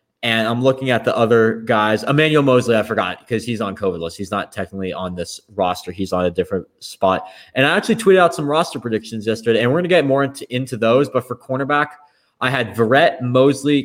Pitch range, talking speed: 110-140 Hz, 225 wpm